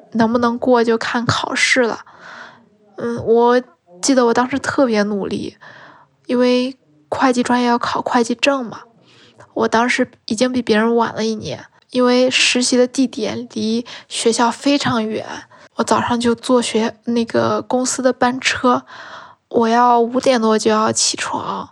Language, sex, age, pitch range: Chinese, female, 10-29, 230-255 Hz